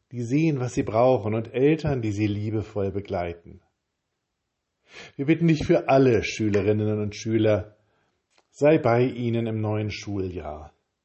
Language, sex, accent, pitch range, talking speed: German, male, German, 100-125 Hz, 135 wpm